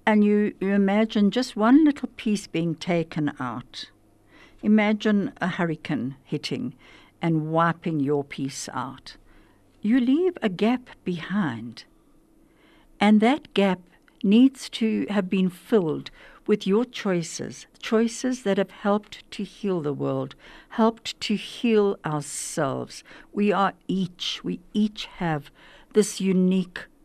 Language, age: English, 60-79